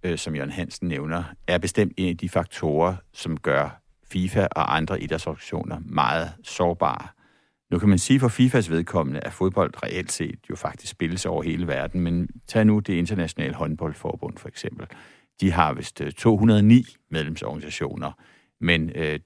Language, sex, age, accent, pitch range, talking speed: Danish, male, 60-79, native, 80-100 Hz, 155 wpm